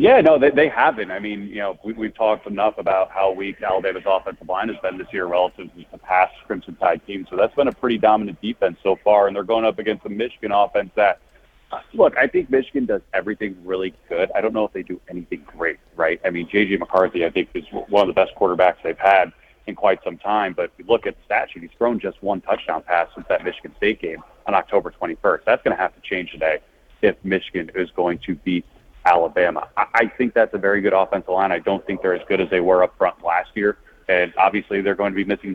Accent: American